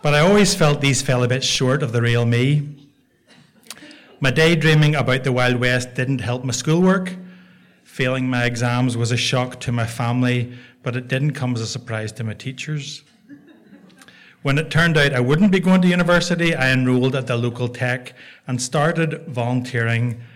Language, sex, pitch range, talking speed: English, male, 120-145 Hz, 180 wpm